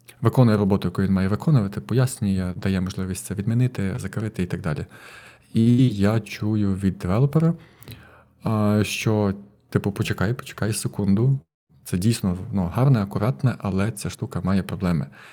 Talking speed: 135 wpm